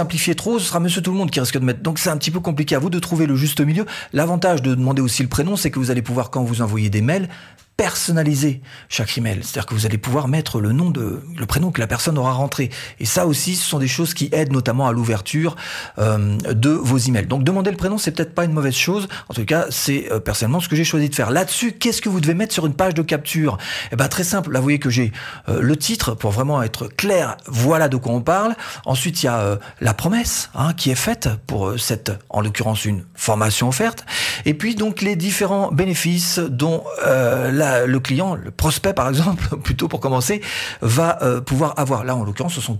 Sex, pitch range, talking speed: male, 120-170 Hz, 245 wpm